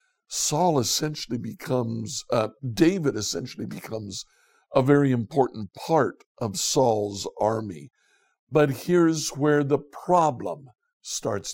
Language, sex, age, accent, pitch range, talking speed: English, male, 60-79, American, 115-145 Hz, 105 wpm